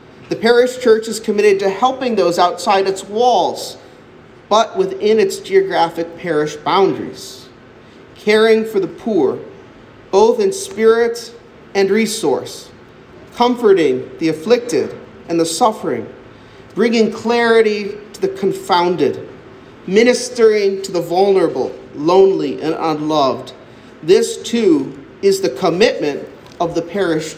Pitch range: 170-240 Hz